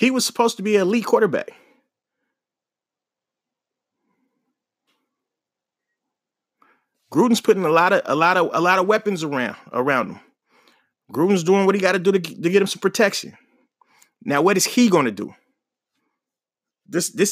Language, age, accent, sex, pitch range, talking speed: English, 30-49, American, male, 195-250 Hz, 150 wpm